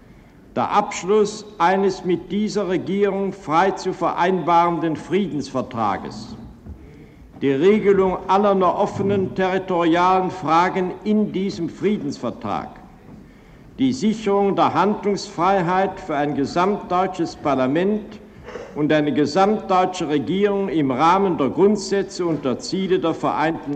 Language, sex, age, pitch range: German, male, 60-79, 165-200 Hz